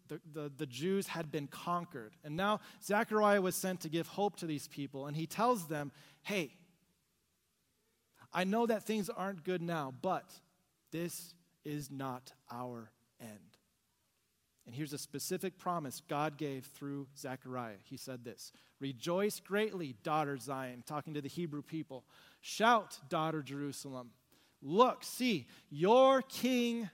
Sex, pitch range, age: male, 150-205 Hz, 30-49